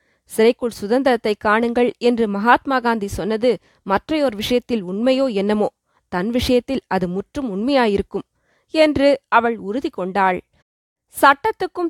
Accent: native